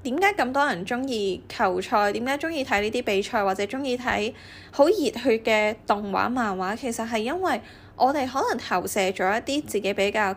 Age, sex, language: 10-29, female, Chinese